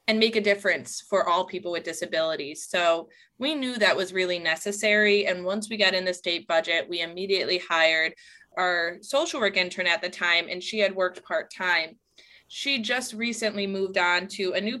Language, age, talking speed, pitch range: English, 20-39, 190 wpm, 175-210 Hz